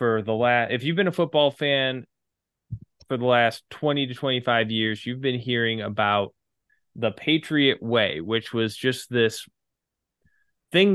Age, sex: 20-39, male